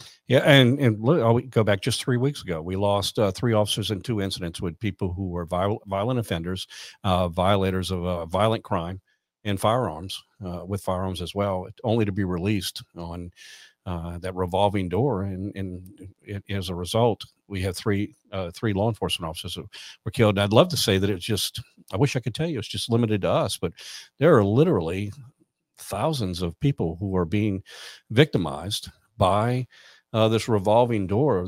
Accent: American